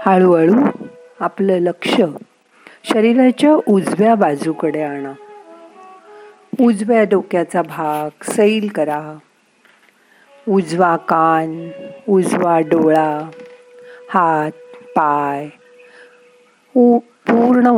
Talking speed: 45 wpm